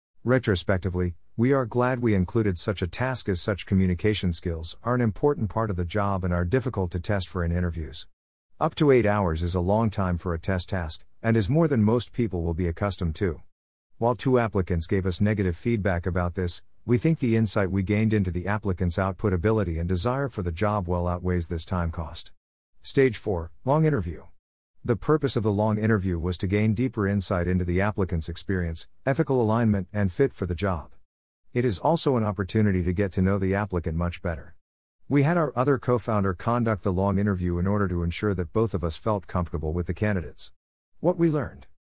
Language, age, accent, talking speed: English, 50-69, American, 205 wpm